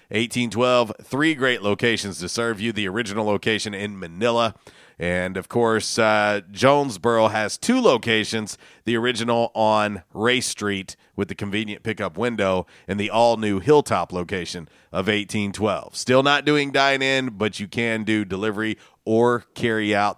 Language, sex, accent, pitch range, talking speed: English, male, American, 105-135 Hz, 145 wpm